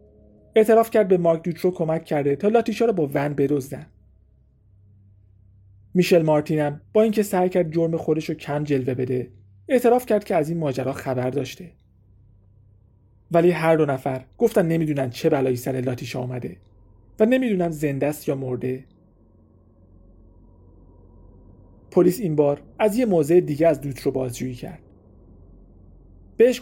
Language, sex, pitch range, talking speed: Persian, male, 120-165 Hz, 140 wpm